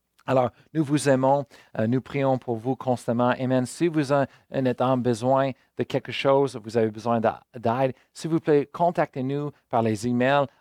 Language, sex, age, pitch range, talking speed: French, male, 40-59, 110-130 Hz, 165 wpm